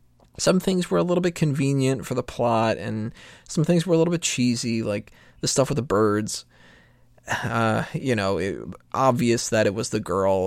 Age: 20-39